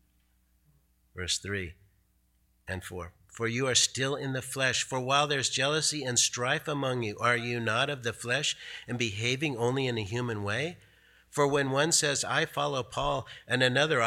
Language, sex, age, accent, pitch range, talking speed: English, male, 50-69, American, 95-135 Hz, 175 wpm